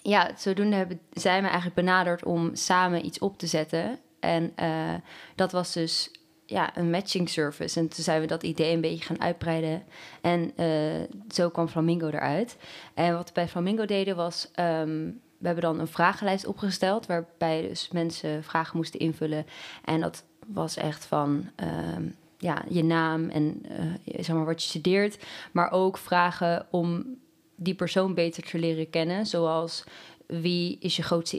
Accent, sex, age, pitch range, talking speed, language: Dutch, female, 20-39, 165-185 Hz, 170 wpm, Dutch